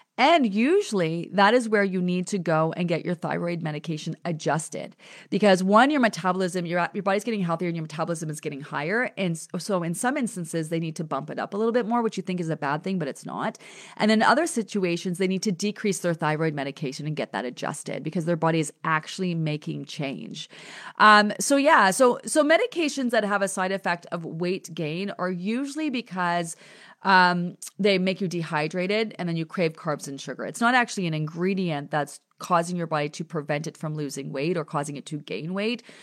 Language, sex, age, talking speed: English, female, 30-49, 210 wpm